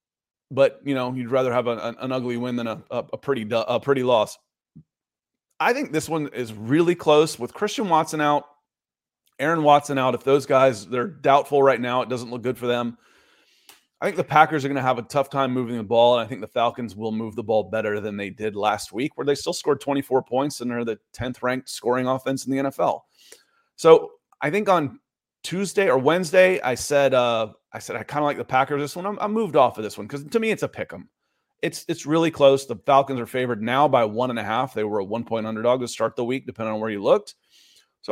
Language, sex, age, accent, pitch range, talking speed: English, male, 30-49, American, 120-155 Hz, 240 wpm